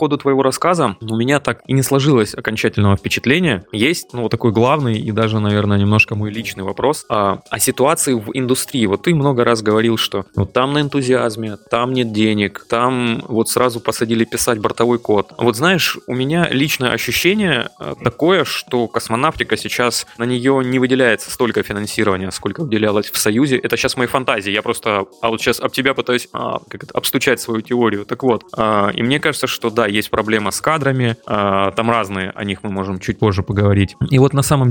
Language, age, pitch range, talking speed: Russian, 20-39, 110-130 Hz, 190 wpm